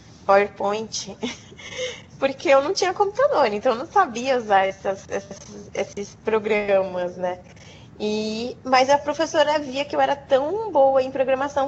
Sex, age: female, 20-39